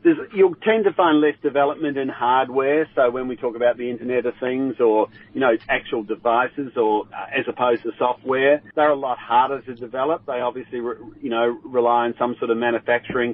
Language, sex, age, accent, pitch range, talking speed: English, male, 40-59, Australian, 115-135 Hz, 205 wpm